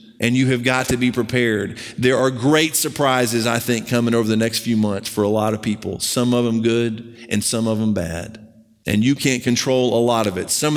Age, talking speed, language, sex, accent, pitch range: 40-59, 235 wpm, English, male, American, 120-155 Hz